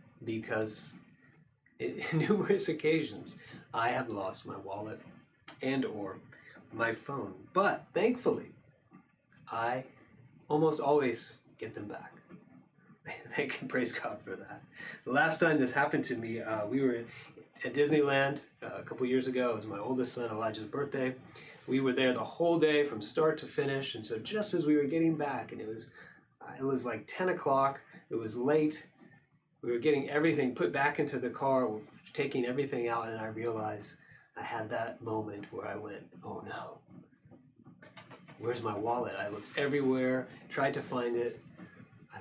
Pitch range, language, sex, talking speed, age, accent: 115-150 Hz, English, male, 160 wpm, 30-49, American